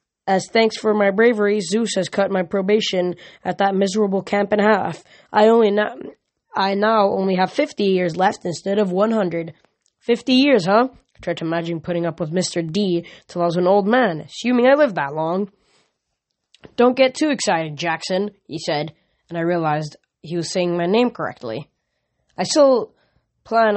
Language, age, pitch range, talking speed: English, 10-29, 170-215 Hz, 180 wpm